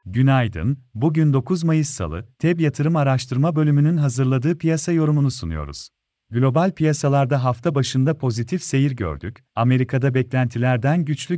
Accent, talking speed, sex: native, 120 wpm, male